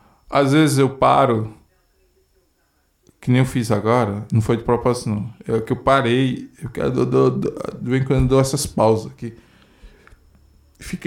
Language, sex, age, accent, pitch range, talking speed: Portuguese, male, 20-39, Brazilian, 110-135 Hz, 165 wpm